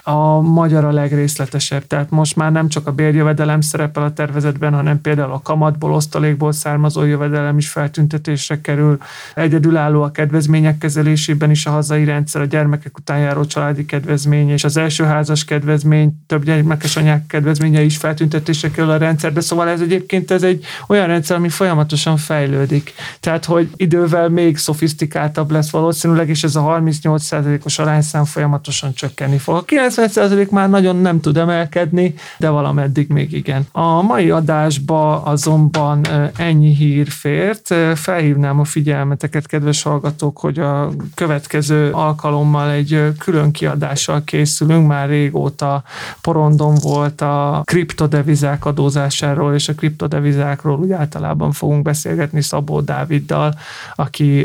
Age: 30-49